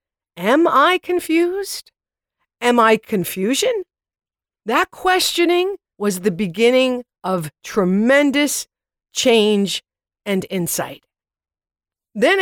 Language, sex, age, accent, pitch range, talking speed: English, female, 50-69, American, 195-275 Hz, 80 wpm